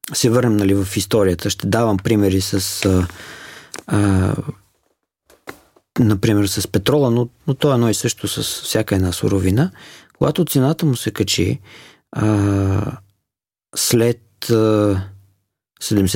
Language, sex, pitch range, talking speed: Bulgarian, male, 100-140 Hz, 115 wpm